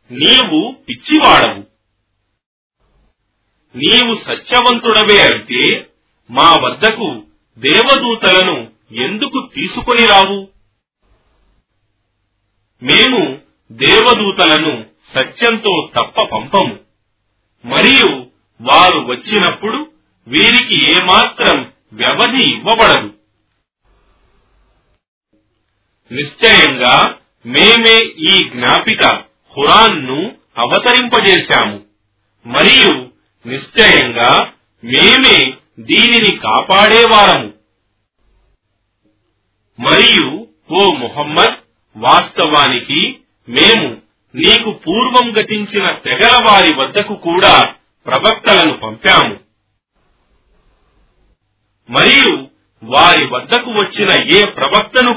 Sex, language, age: male, Telugu, 40-59